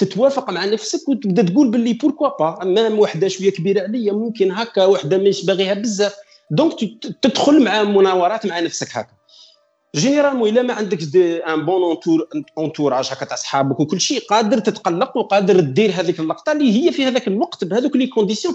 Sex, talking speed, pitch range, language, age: male, 175 wpm, 175-250 Hz, Arabic, 40-59